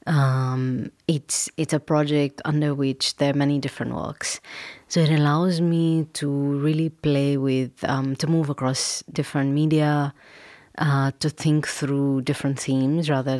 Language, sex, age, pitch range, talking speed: Dutch, female, 30-49, 135-155 Hz, 150 wpm